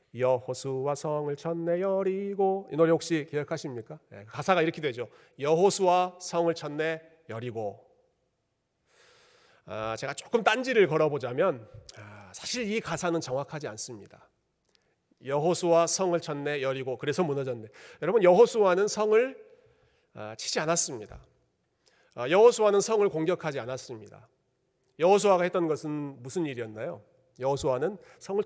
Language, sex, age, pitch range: Korean, male, 40-59, 135-195 Hz